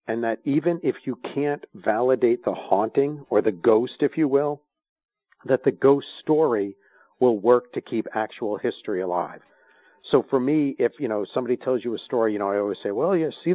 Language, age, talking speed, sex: English, 50-69, 200 wpm, male